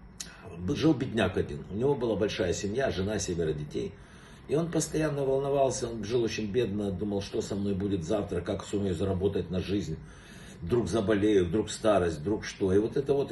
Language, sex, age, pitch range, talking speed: Russian, male, 50-69, 100-130 Hz, 180 wpm